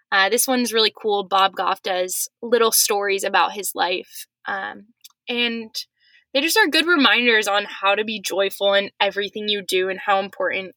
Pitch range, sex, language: 195-240 Hz, female, English